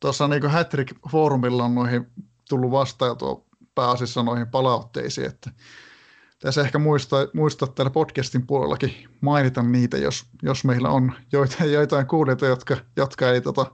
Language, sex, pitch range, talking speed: Finnish, male, 125-155 Hz, 140 wpm